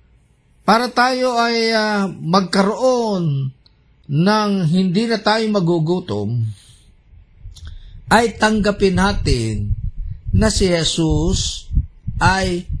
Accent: native